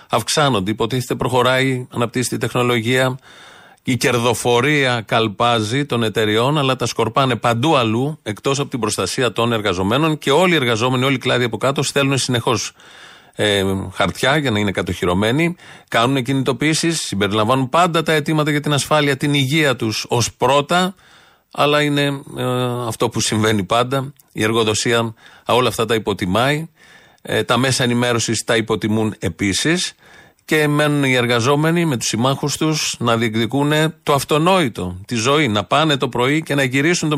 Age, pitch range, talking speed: 40-59, 110-145 Hz, 150 wpm